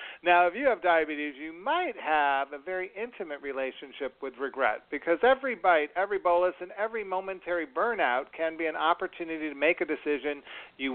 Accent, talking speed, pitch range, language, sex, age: American, 175 wpm, 145-190 Hz, English, male, 50-69